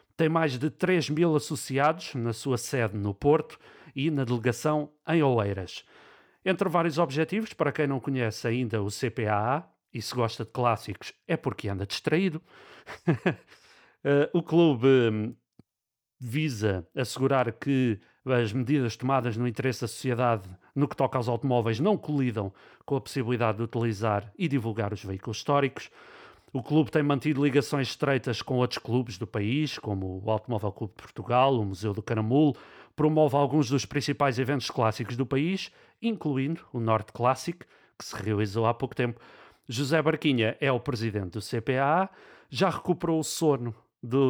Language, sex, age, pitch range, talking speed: Portuguese, male, 40-59, 115-145 Hz, 155 wpm